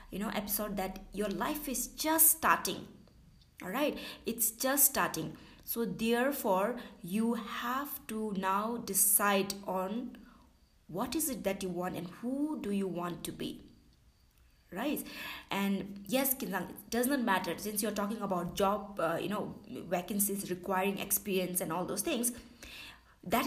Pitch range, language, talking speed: 195-250 Hz, English, 145 wpm